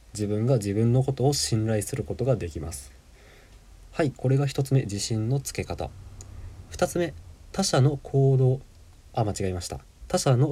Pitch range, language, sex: 100-135 Hz, Japanese, male